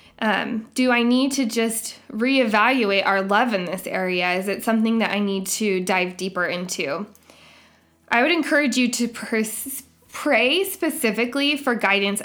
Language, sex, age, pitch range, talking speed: English, female, 20-39, 195-250 Hz, 155 wpm